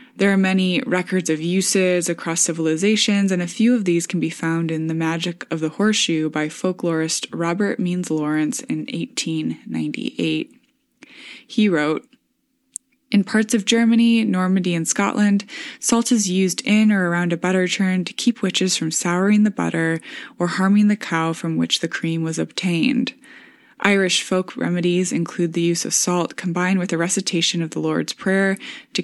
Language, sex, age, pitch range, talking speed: English, female, 20-39, 165-210 Hz, 165 wpm